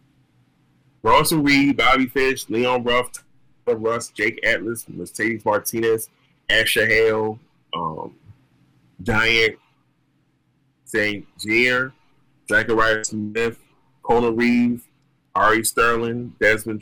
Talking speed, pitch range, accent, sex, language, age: 90 wpm, 110-140 Hz, American, male, English, 30-49